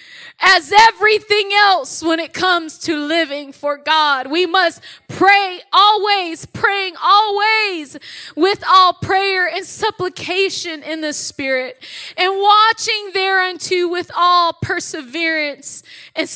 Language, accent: English, American